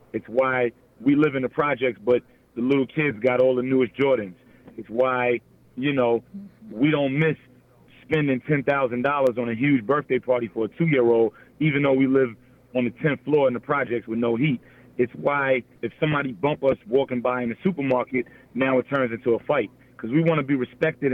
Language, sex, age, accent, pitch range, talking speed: English, male, 30-49, American, 125-145 Hz, 200 wpm